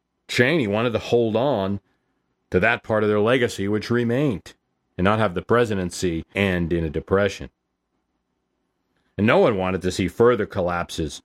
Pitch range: 85-110 Hz